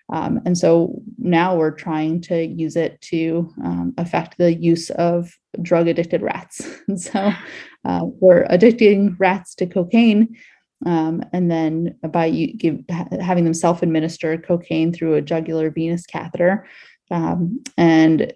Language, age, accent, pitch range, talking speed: English, 20-39, American, 165-185 Hz, 135 wpm